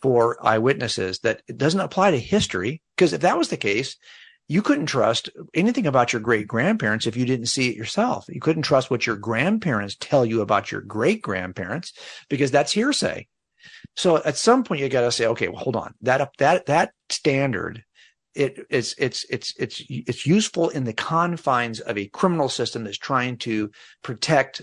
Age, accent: 50-69, American